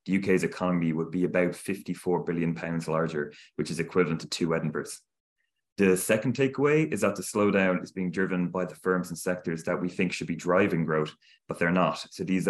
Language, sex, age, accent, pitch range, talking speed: English, male, 20-39, Irish, 80-95 Hz, 200 wpm